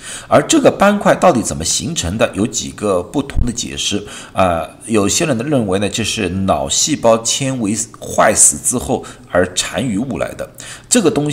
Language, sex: Chinese, male